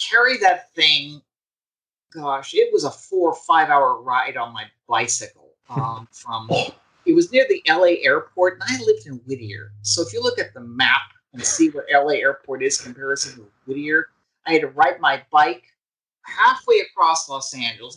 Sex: male